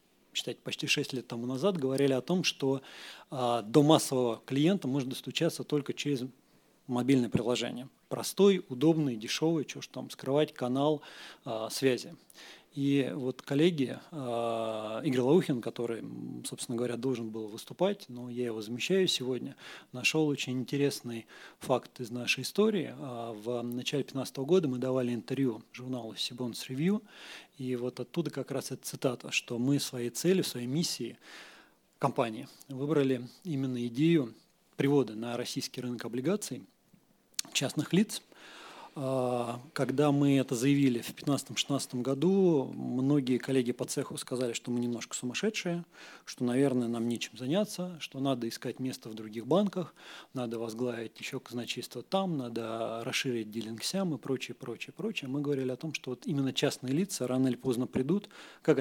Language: Russian